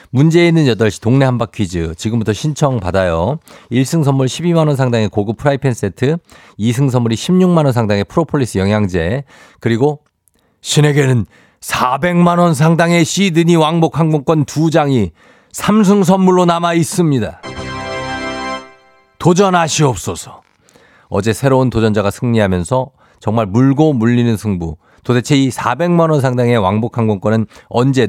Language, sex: Korean, male